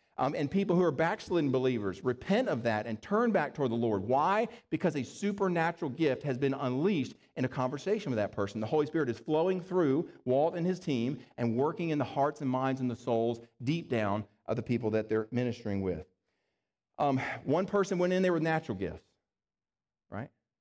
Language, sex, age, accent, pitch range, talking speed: English, male, 40-59, American, 115-160 Hz, 200 wpm